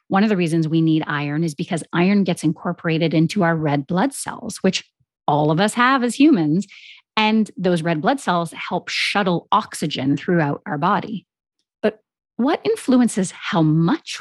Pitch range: 170-255 Hz